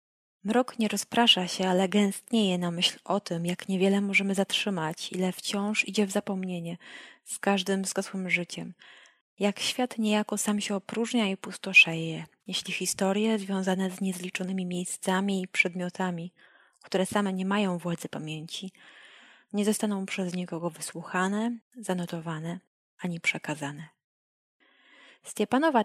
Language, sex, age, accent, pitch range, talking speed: Polish, female, 20-39, native, 175-210 Hz, 125 wpm